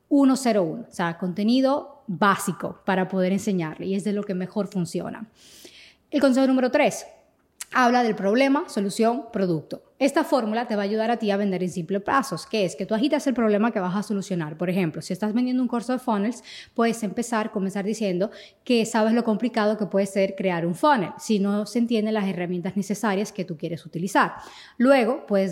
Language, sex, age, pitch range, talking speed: Spanish, female, 20-39, 190-240 Hz, 200 wpm